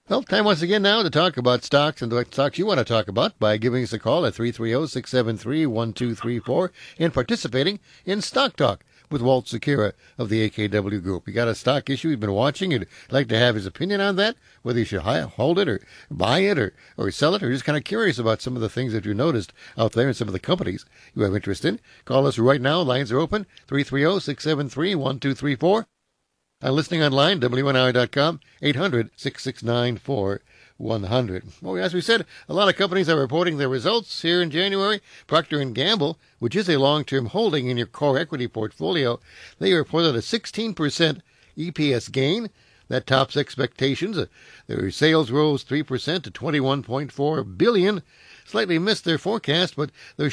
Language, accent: English, American